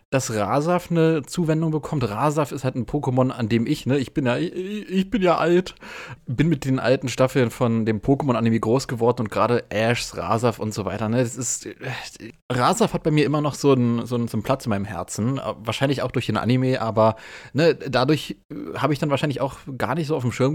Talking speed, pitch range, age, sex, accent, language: 230 wpm, 110-145 Hz, 30-49, male, German, German